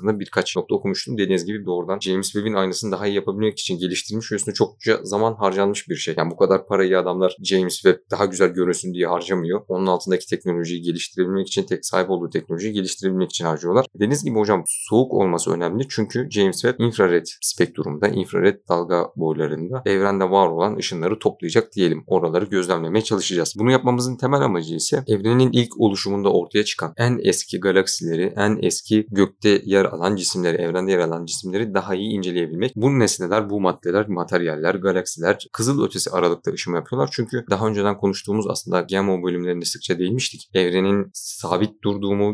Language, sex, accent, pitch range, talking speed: Turkish, male, native, 90-105 Hz, 165 wpm